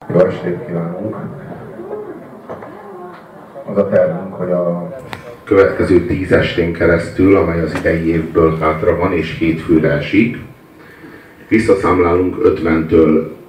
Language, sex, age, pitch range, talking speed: Hungarian, male, 50-69, 80-90 Hz, 105 wpm